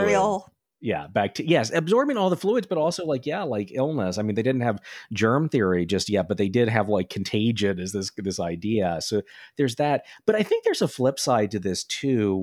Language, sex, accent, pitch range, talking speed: English, male, American, 100-135 Hz, 220 wpm